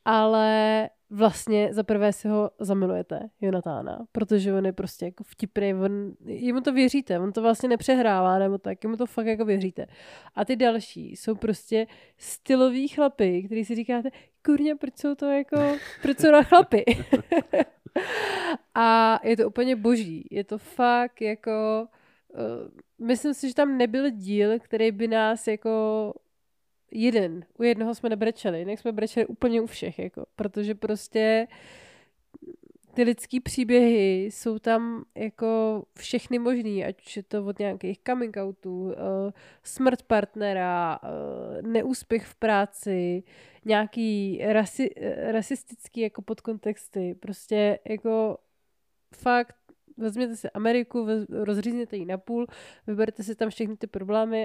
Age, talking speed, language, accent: 20-39, 135 wpm, Czech, native